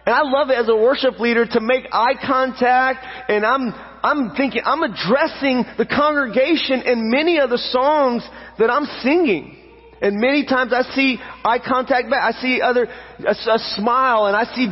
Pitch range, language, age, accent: 200-255 Hz, English, 30-49, American